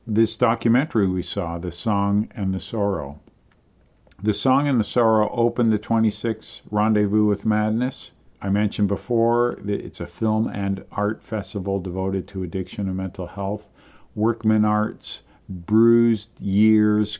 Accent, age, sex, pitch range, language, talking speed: American, 50-69, male, 95-110 Hz, English, 140 wpm